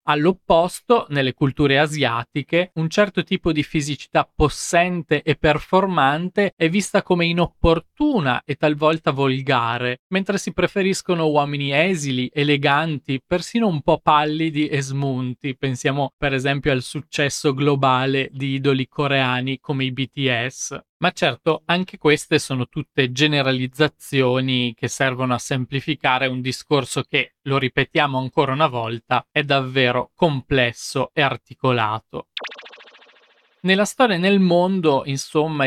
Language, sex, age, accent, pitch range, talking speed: Italian, male, 20-39, native, 130-160 Hz, 125 wpm